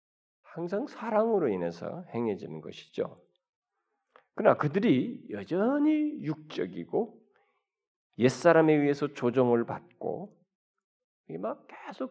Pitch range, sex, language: 115-185 Hz, male, Korean